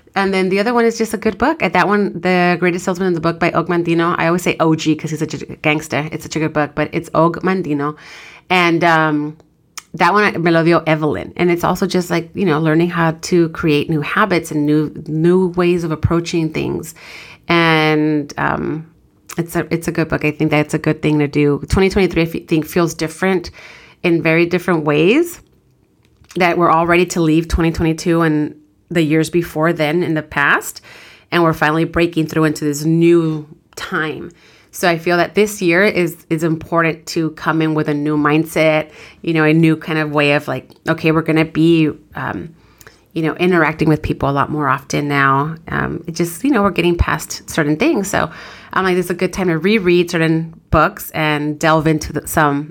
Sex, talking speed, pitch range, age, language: female, 215 wpm, 155-175 Hz, 30-49, English